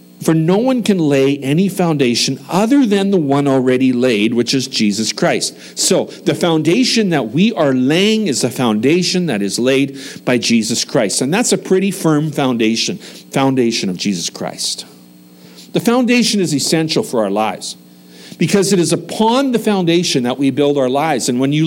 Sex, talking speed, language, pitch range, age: male, 175 wpm, English, 115-175 Hz, 50-69